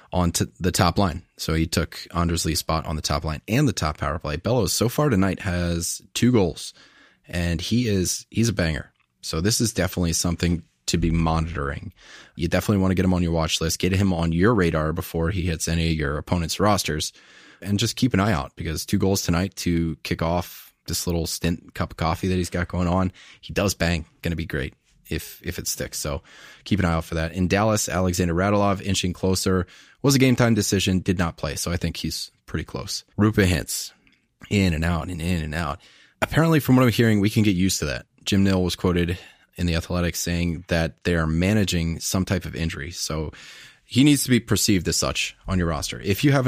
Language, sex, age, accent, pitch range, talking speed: English, male, 20-39, American, 85-100 Hz, 225 wpm